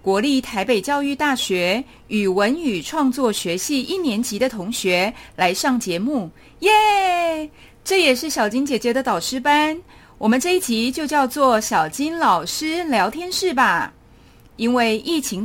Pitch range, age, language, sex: 215-305 Hz, 30-49, Chinese, female